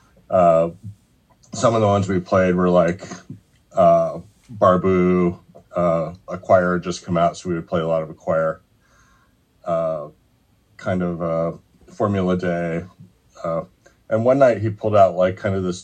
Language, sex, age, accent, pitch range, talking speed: English, male, 30-49, American, 90-110 Hz, 165 wpm